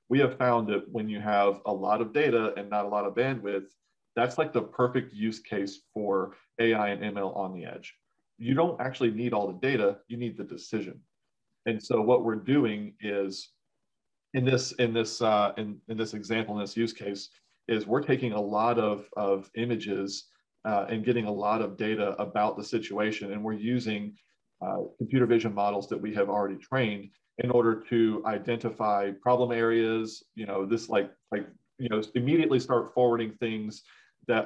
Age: 40-59